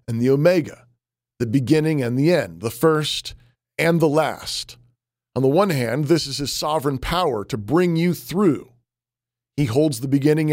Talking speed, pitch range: 170 wpm, 120-165 Hz